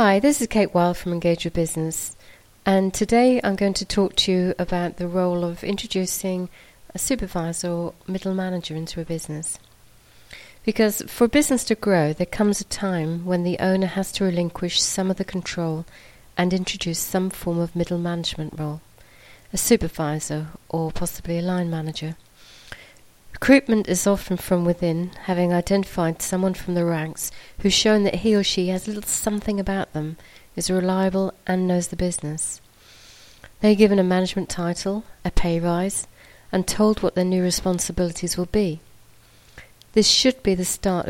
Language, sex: English, female